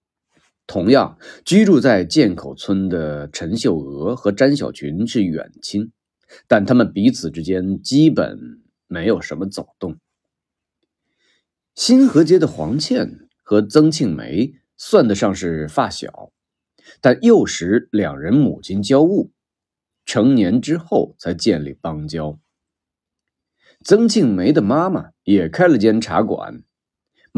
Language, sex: Chinese, male